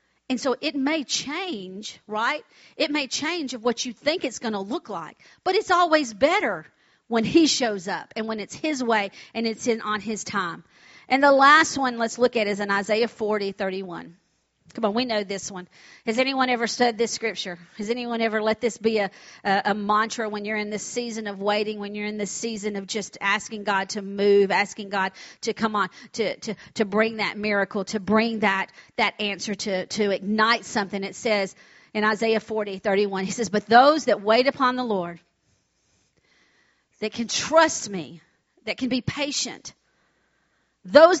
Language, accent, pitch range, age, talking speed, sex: English, American, 210-260 Hz, 40-59, 190 wpm, female